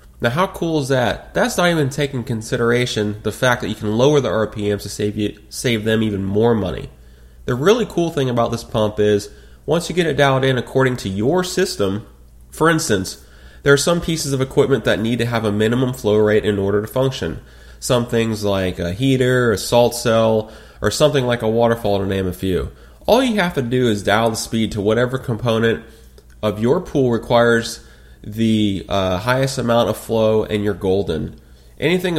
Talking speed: 200 wpm